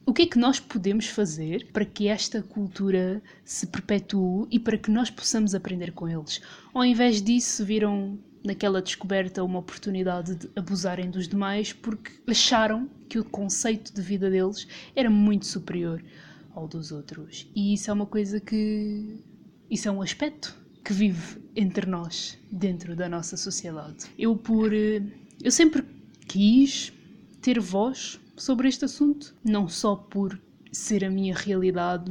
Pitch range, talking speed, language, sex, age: 185-220 Hz, 150 wpm, Portuguese, female, 20-39